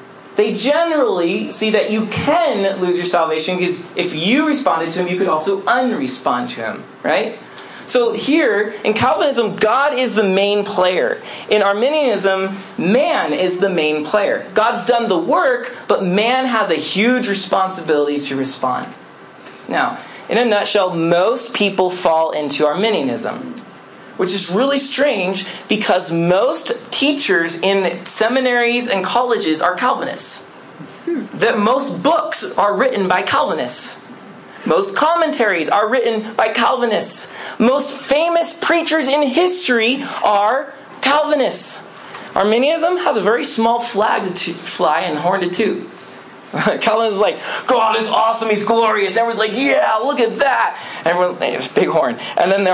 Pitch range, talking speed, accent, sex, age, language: 185-255 Hz, 145 wpm, American, male, 40-59, English